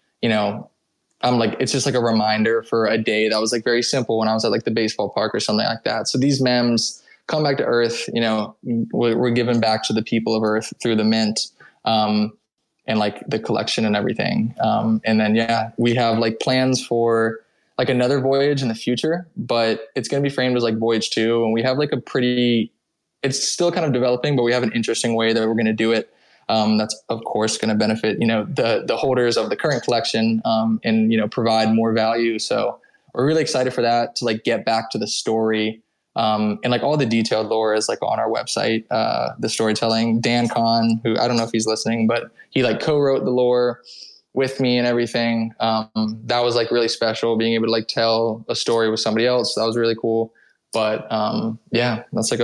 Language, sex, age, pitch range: English, male, 20-39, 110-120 Hz